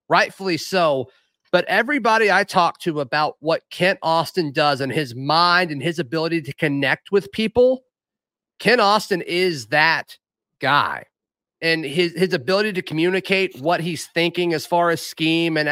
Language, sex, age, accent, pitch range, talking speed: English, male, 30-49, American, 155-190 Hz, 155 wpm